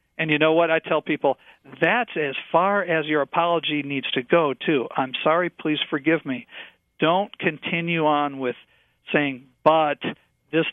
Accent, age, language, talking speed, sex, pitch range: American, 50-69, English, 160 wpm, male, 140-170 Hz